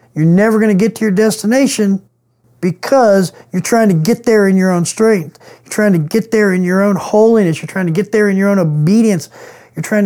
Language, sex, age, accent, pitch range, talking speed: English, male, 50-69, American, 150-190 Hz, 225 wpm